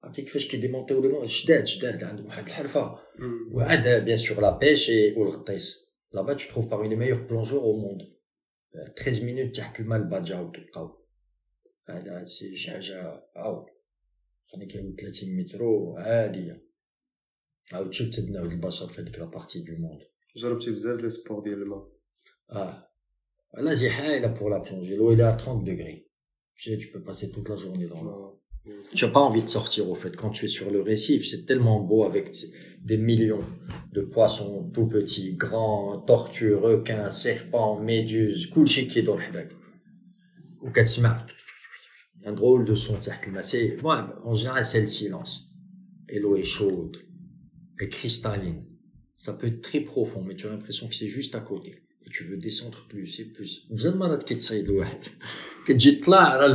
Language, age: Arabic, 50-69